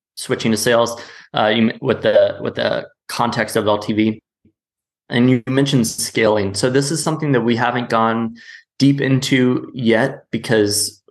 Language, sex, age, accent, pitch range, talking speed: English, male, 20-39, American, 105-130 Hz, 145 wpm